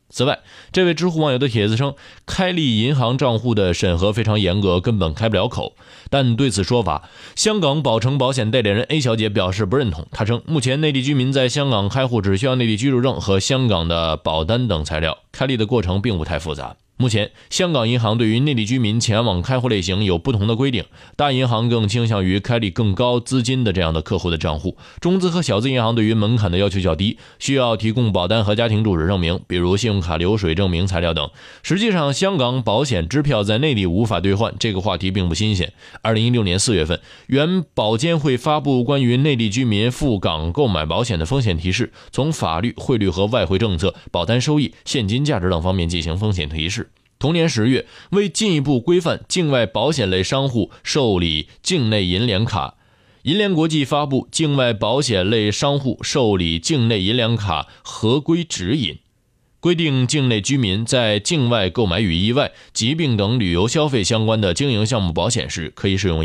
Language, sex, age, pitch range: Chinese, male, 20-39, 95-130 Hz